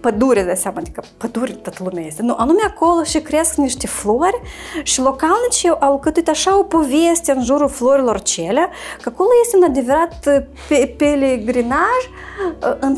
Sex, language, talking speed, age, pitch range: female, Romanian, 165 wpm, 20-39, 230-335 Hz